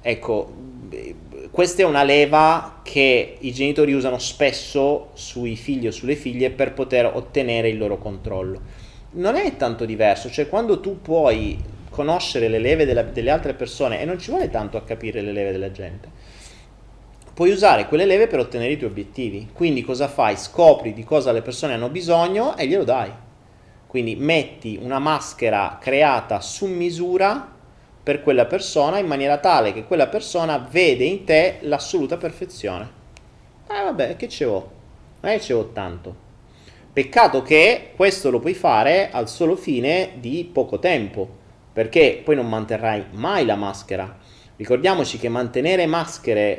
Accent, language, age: native, Italian, 30-49